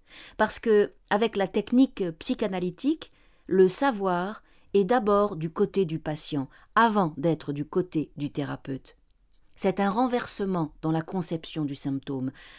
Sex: female